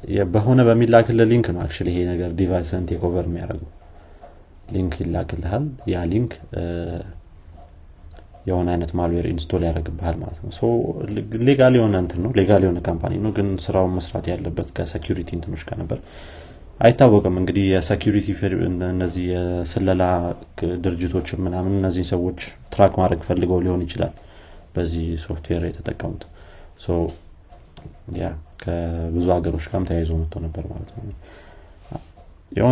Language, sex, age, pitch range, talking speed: Amharic, male, 30-49, 85-100 Hz, 110 wpm